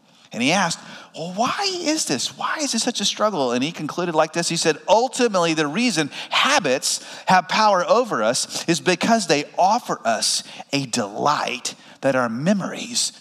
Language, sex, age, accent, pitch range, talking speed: English, male, 30-49, American, 160-230 Hz, 175 wpm